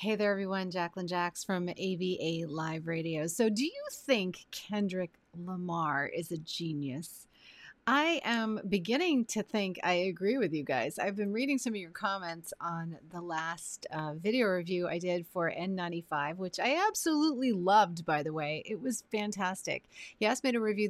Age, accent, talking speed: 30-49, American, 170 wpm